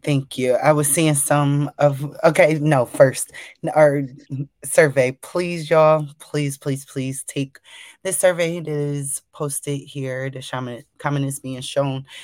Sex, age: female, 20-39